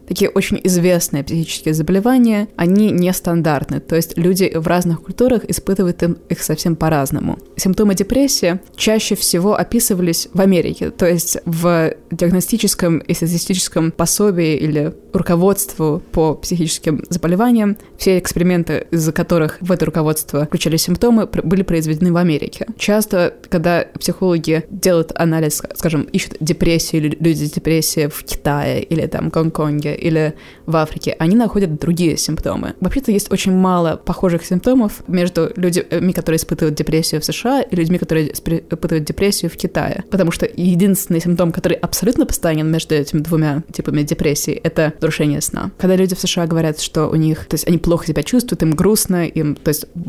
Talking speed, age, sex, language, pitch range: 150 wpm, 20-39, female, Russian, 160-190 Hz